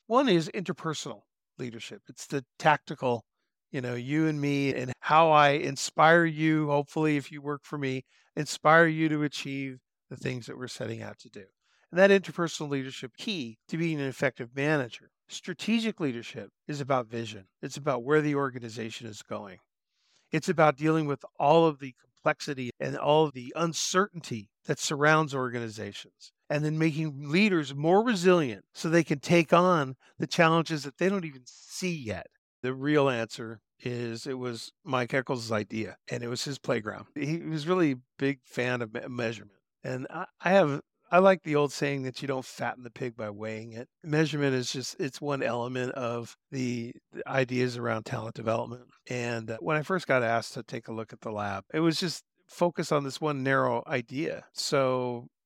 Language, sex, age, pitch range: English, male, 50-69, 125-160 Hz